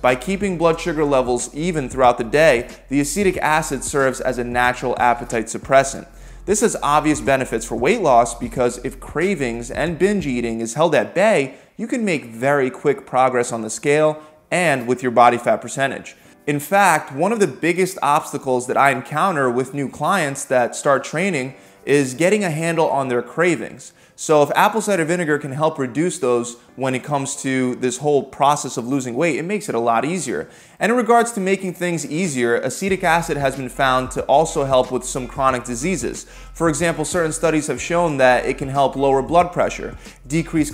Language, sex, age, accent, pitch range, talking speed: English, male, 20-39, American, 130-170 Hz, 195 wpm